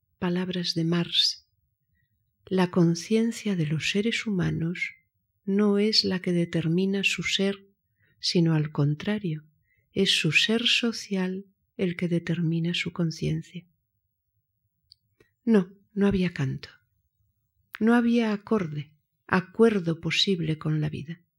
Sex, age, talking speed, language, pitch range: female, 40-59, 110 wpm, Spanish, 150-195 Hz